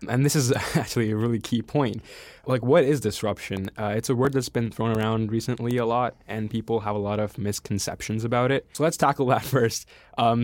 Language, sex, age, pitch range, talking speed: English, male, 20-39, 105-125 Hz, 220 wpm